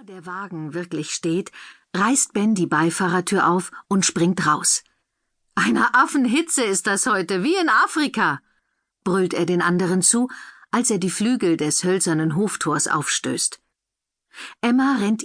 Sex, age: female, 50-69